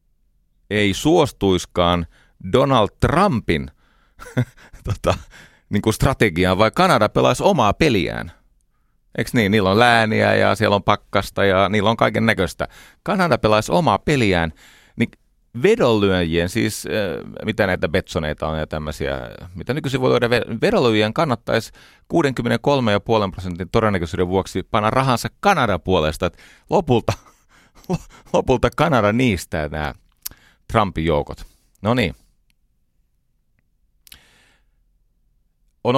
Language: Finnish